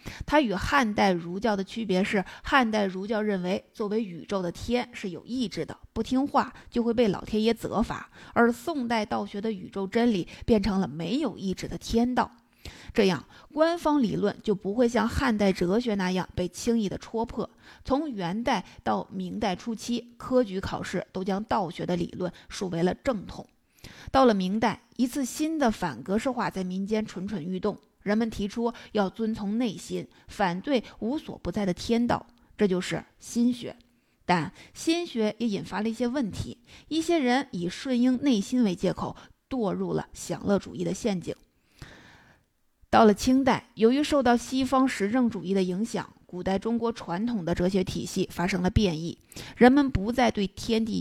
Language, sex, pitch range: Chinese, female, 185-240 Hz